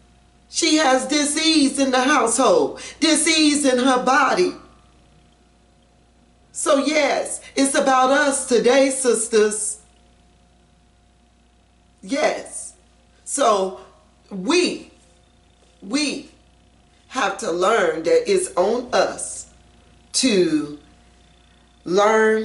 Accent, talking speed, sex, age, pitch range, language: American, 80 wpm, female, 40-59, 170-260 Hz, English